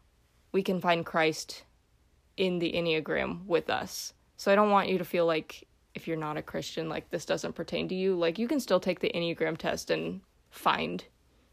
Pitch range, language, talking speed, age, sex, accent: 155-190 Hz, English, 200 wpm, 20-39, female, American